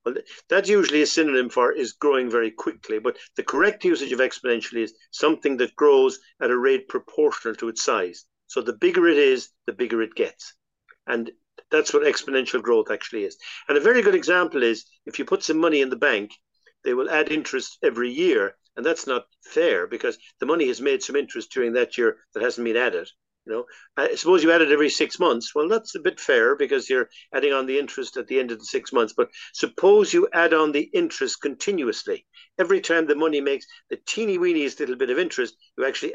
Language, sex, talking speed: English, male, 215 wpm